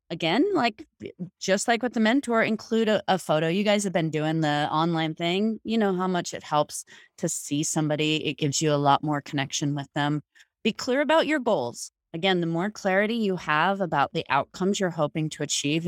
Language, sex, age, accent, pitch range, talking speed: English, female, 30-49, American, 155-200 Hz, 210 wpm